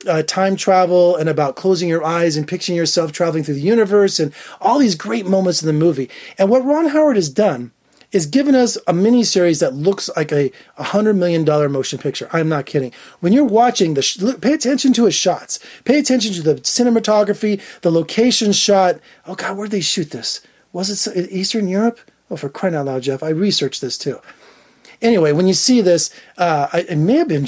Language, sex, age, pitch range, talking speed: English, male, 30-49, 160-215 Hz, 210 wpm